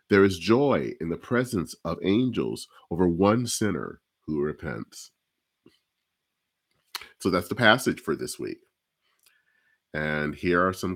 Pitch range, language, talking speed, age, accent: 80-120 Hz, English, 130 wpm, 40-59, American